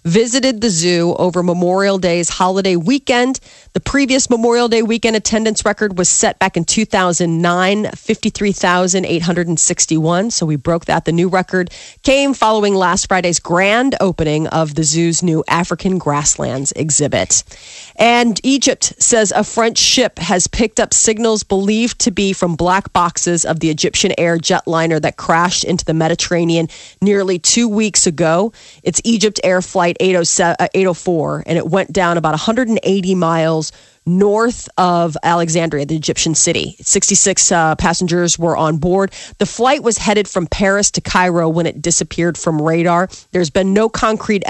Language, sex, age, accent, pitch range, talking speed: English, female, 30-49, American, 170-215 Hz, 150 wpm